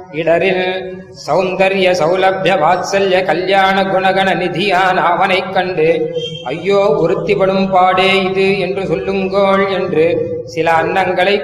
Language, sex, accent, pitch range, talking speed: Tamil, male, native, 185-195 Hz, 90 wpm